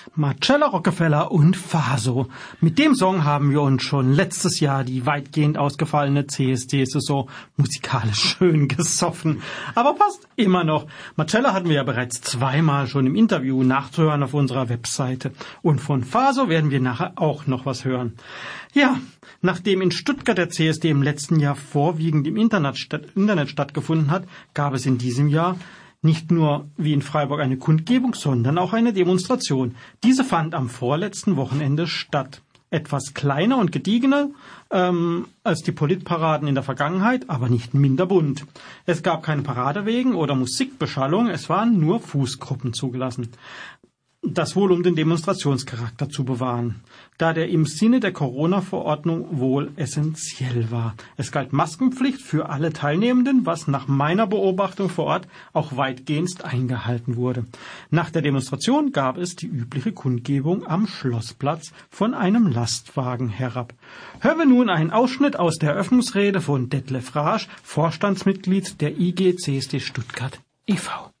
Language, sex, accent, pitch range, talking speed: German, male, German, 135-185 Hz, 145 wpm